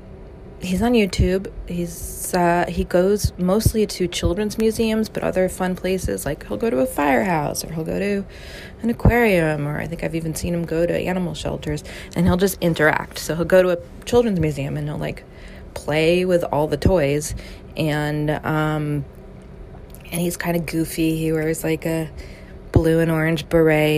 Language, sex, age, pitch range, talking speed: English, female, 20-39, 145-180 Hz, 180 wpm